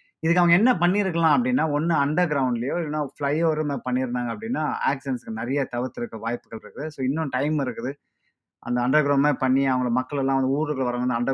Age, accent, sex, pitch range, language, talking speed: 20-39, native, male, 130-175 Hz, Tamil, 165 wpm